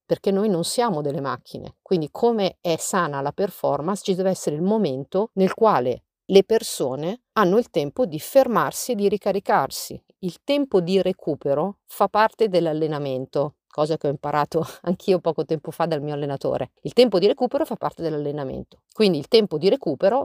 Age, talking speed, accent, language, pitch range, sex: 50-69, 175 wpm, native, Italian, 145-190 Hz, female